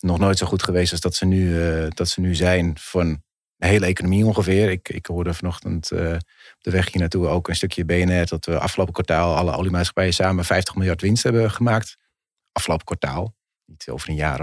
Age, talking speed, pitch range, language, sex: 30-49, 210 wpm, 85-95 Hz, Dutch, male